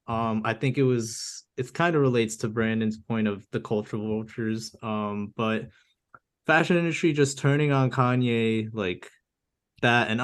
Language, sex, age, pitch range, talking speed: Finnish, male, 20-39, 110-125 Hz, 160 wpm